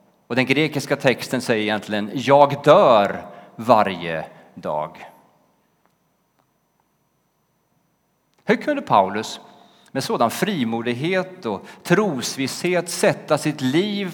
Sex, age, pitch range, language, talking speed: male, 30-49, 110-160 Hz, Swedish, 90 wpm